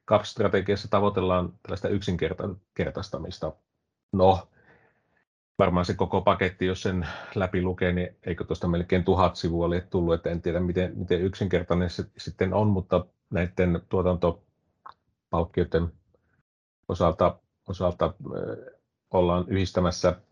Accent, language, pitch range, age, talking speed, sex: native, Finnish, 85-95 Hz, 30-49, 115 wpm, male